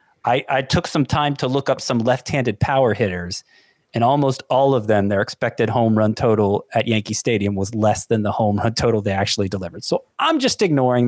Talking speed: 210 wpm